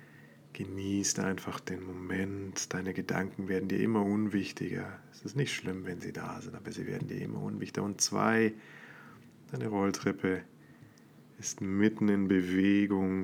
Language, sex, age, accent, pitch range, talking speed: German, male, 30-49, German, 95-105 Hz, 145 wpm